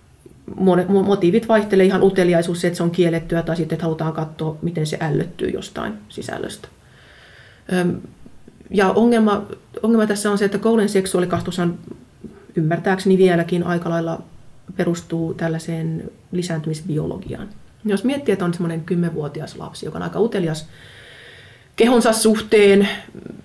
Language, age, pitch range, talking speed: Finnish, 30-49, 165-195 Hz, 125 wpm